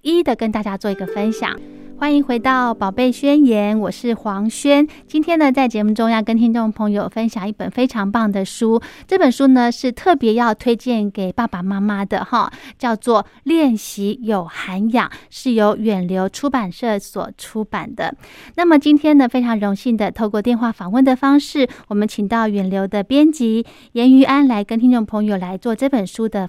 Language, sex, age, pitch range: Chinese, female, 20-39, 210-260 Hz